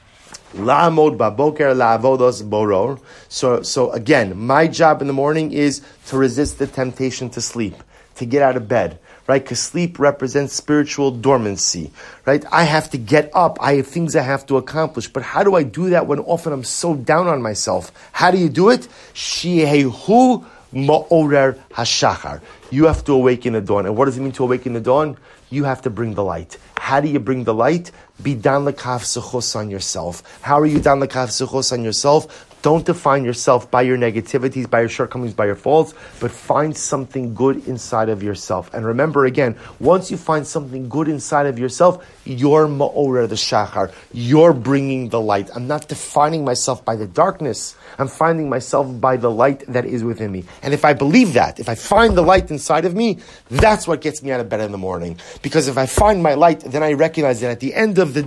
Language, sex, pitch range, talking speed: English, male, 120-155 Hz, 200 wpm